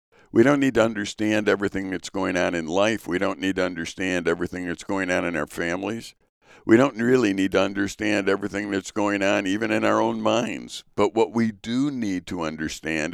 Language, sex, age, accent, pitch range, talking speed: English, male, 60-79, American, 85-110 Hz, 205 wpm